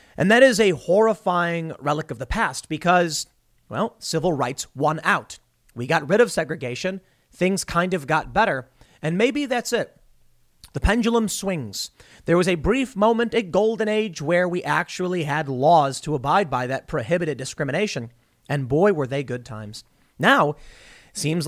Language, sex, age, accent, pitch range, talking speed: English, male, 30-49, American, 140-200 Hz, 165 wpm